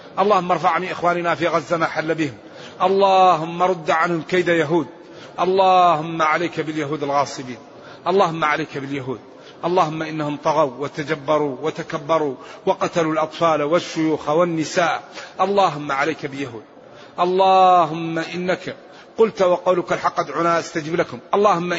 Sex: male